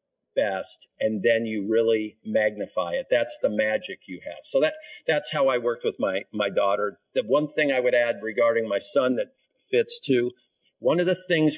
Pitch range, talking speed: 105-155 Hz, 195 wpm